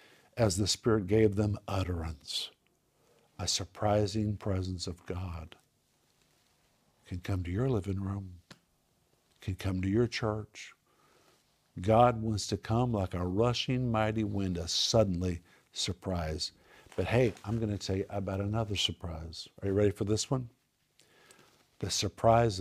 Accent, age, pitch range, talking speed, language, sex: American, 50-69, 95-110 Hz, 140 wpm, English, male